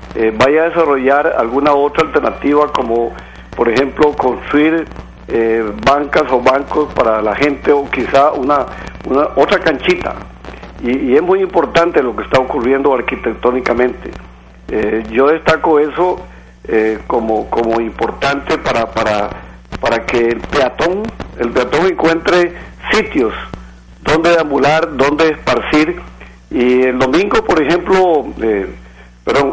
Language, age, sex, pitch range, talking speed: Spanish, 50-69, male, 110-155 Hz, 130 wpm